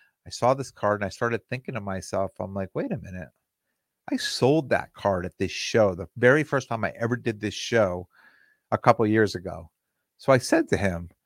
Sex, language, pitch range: male, English, 105-140 Hz